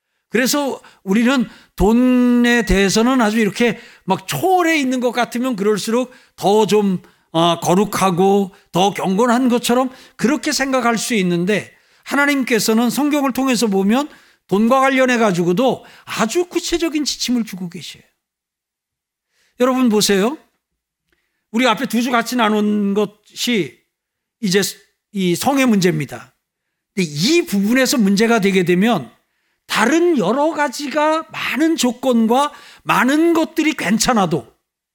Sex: male